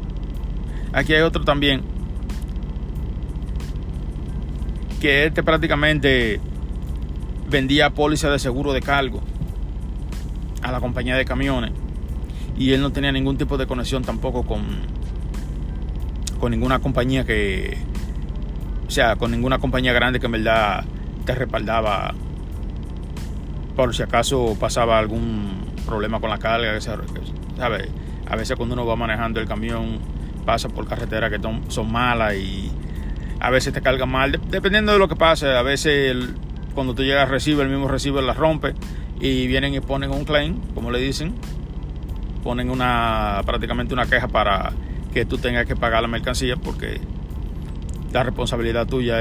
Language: Spanish